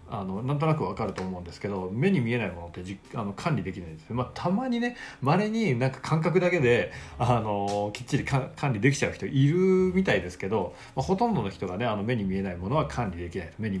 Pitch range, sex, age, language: 95-145 Hz, male, 40-59, Japanese